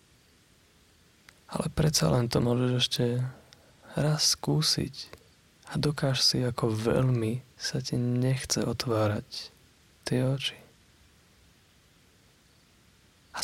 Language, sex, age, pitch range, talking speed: Slovak, male, 20-39, 115-140 Hz, 90 wpm